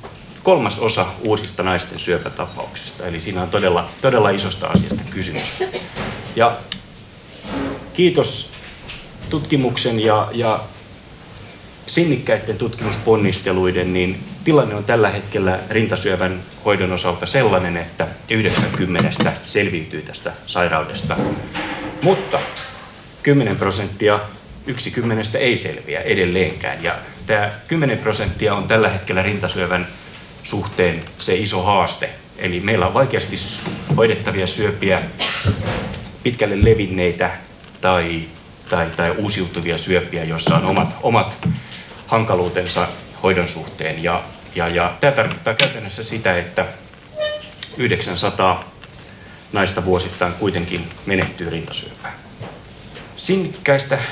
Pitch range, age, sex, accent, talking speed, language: 90-115 Hz, 30-49, male, native, 100 wpm, Finnish